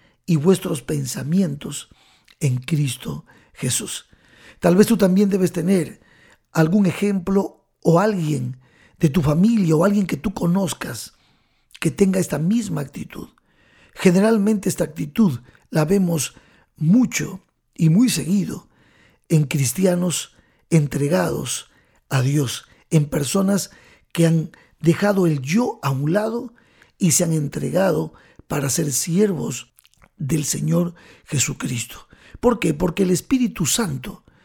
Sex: male